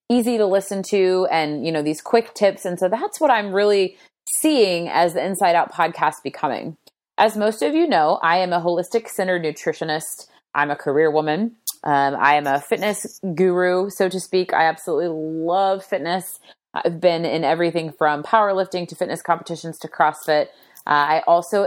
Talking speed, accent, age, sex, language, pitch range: 175 wpm, American, 30-49, female, English, 155-195 Hz